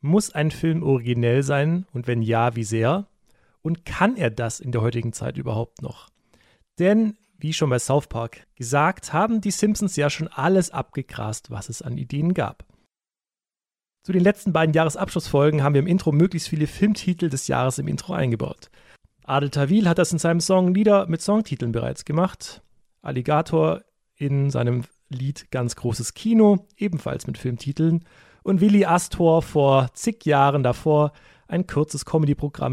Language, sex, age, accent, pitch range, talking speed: German, male, 40-59, German, 130-180 Hz, 160 wpm